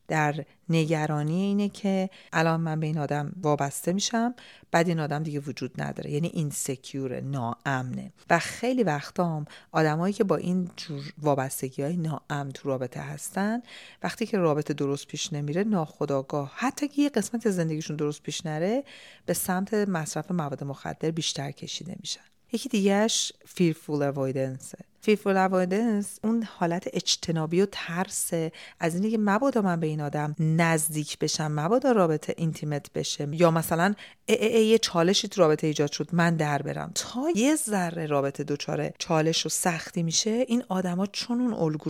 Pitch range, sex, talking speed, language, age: 150-195 Hz, female, 145 wpm, Persian, 40-59